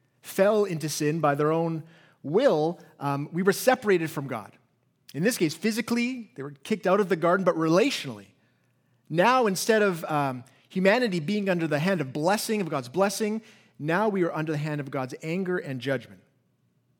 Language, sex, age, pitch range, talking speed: English, male, 30-49, 150-210 Hz, 180 wpm